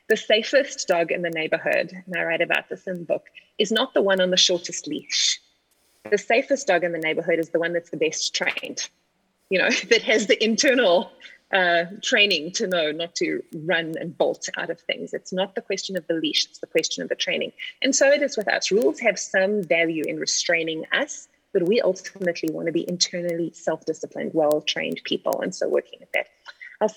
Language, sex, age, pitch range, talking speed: English, female, 30-49, 170-250 Hz, 210 wpm